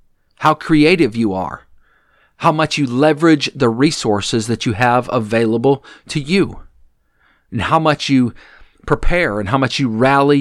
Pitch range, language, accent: 110-155 Hz, English, American